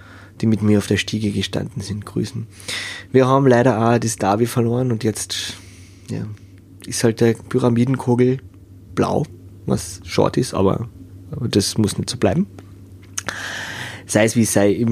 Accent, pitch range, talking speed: German, 100-130 Hz, 160 wpm